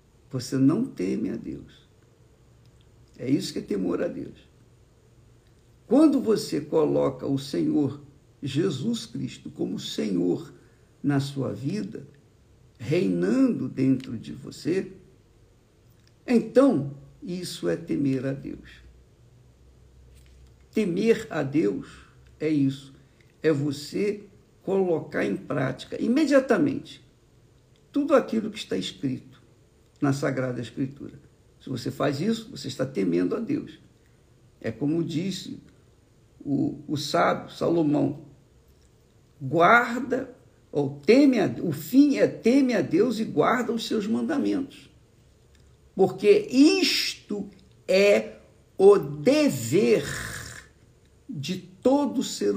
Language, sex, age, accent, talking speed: Portuguese, male, 60-79, Brazilian, 105 wpm